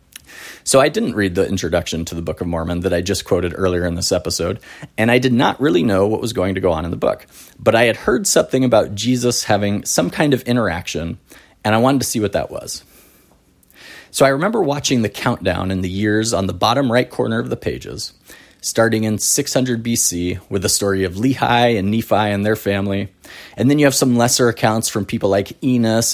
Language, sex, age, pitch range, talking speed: English, male, 30-49, 95-130 Hz, 220 wpm